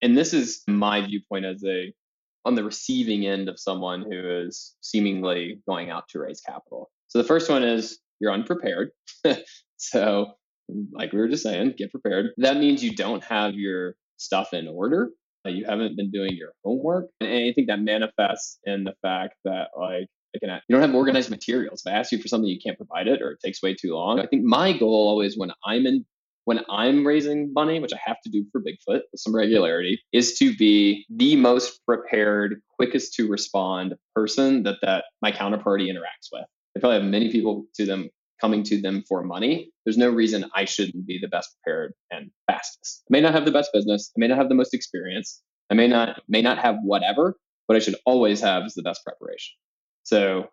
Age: 20-39